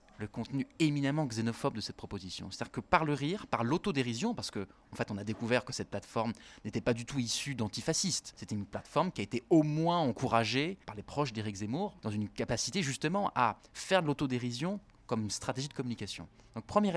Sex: male